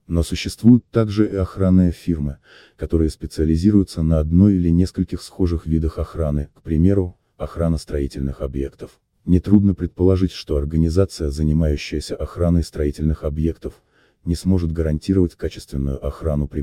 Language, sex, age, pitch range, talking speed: Russian, male, 30-49, 75-90 Hz, 125 wpm